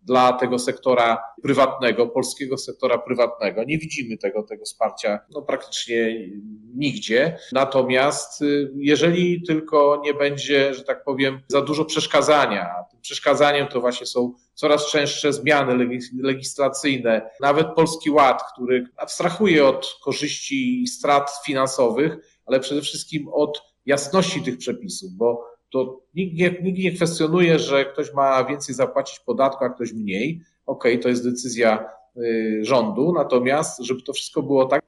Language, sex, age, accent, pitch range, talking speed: Polish, male, 40-59, native, 130-160 Hz, 140 wpm